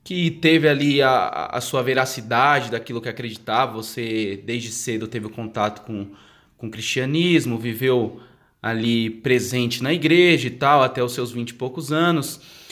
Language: Portuguese